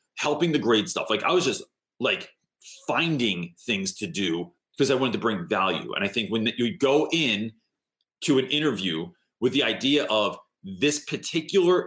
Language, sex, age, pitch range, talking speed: English, male, 30-49, 100-135 Hz, 175 wpm